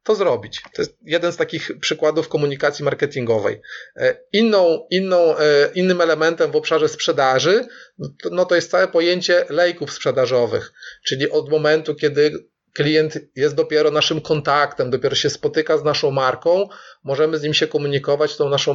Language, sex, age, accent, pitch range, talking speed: Polish, male, 30-49, native, 145-230 Hz, 140 wpm